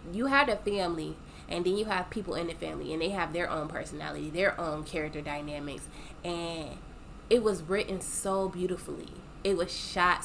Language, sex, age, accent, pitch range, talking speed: English, female, 20-39, American, 155-185 Hz, 180 wpm